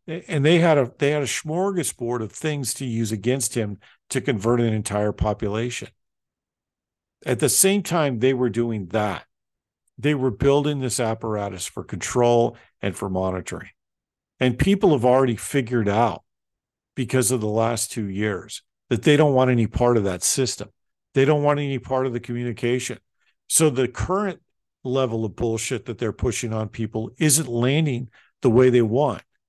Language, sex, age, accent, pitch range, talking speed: English, male, 50-69, American, 115-145 Hz, 170 wpm